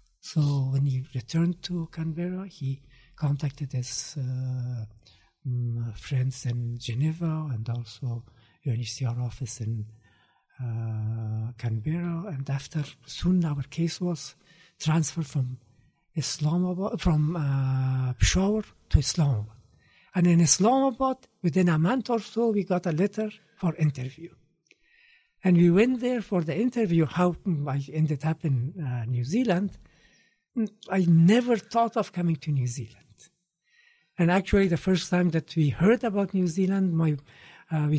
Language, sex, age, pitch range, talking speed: Arabic, male, 60-79, 130-180 Hz, 135 wpm